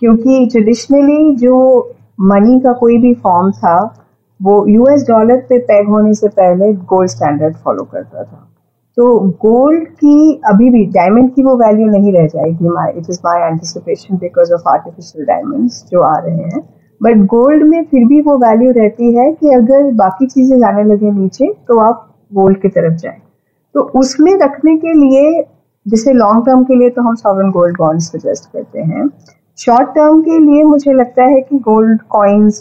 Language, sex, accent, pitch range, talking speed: Hindi, female, native, 190-255 Hz, 175 wpm